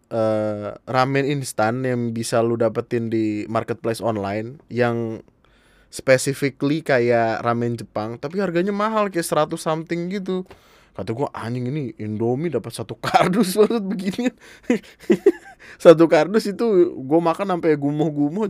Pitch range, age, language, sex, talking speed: 110-150 Hz, 20-39, Indonesian, male, 125 wpm